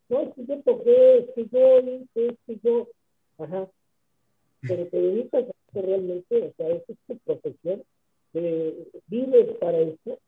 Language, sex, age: English, male, 50-69